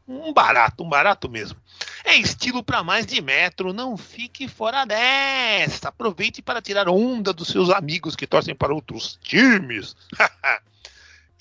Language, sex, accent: Portuguese, male, Brazilian